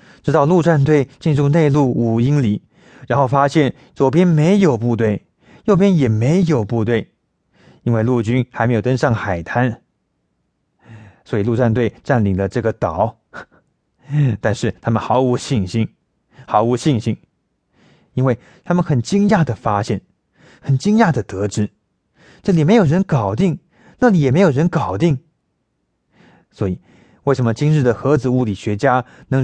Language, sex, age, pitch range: English, male, 20-39, 120-175 Hz